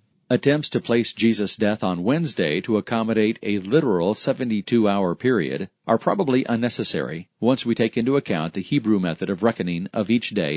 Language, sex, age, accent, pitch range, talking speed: English, male, 40-59, American, 105-130 Hz, 165 wpm